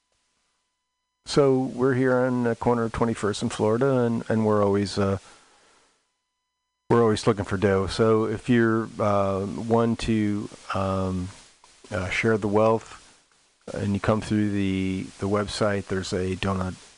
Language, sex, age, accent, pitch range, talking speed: English, male, 40-59, American, 100-130 Hz, 145 wpm